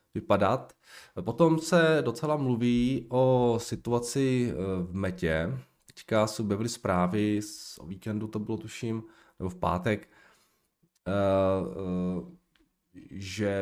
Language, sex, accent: Czech, male, native